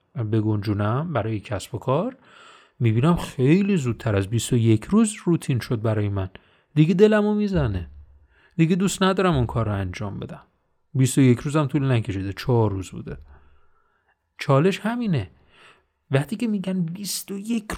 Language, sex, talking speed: Persian, male, 145 wpm